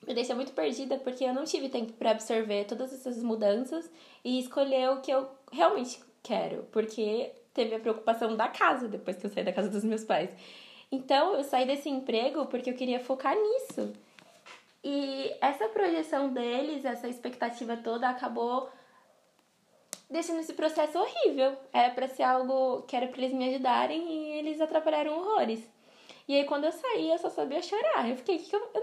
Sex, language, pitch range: female, Portuguese, 230-305 Hz